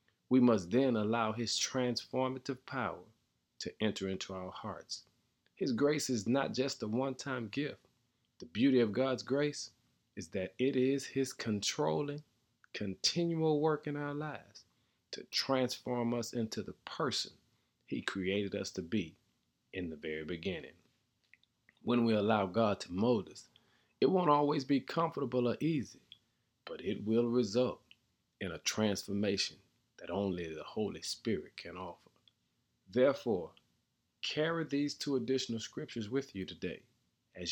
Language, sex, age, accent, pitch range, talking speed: English, male, 40-59, American, 100-130 Hz, 140 wpm